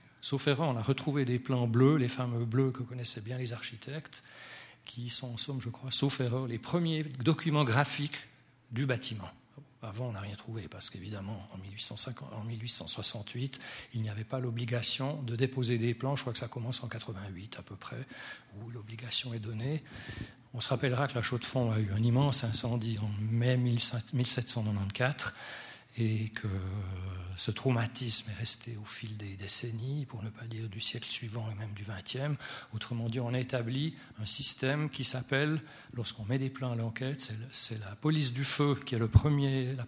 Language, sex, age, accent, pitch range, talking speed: French, male, 40-59, French, 115-130 Hz, 180 wpm